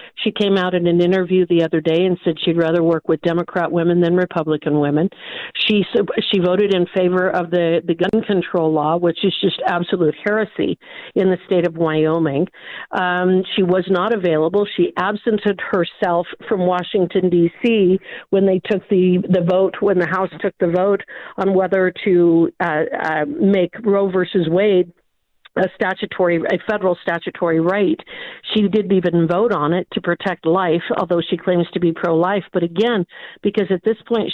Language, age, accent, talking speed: English, 50-69, American, 175 wpm